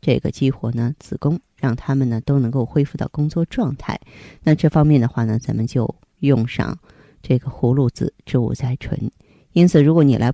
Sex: female